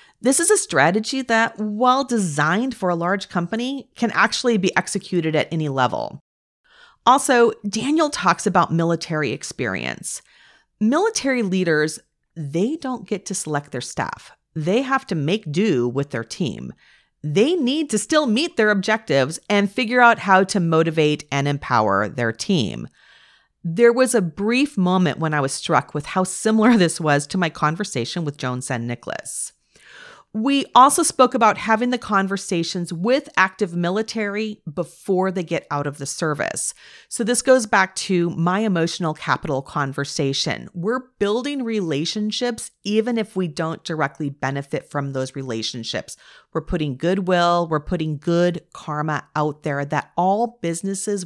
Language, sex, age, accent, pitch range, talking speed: English, female, 40-59, American, 155-230 Hz, 150 wpm